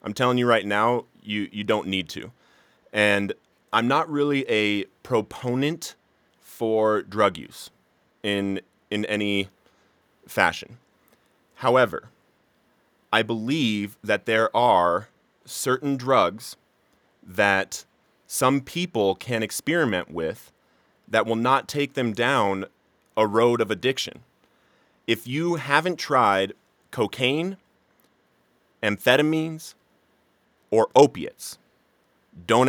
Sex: male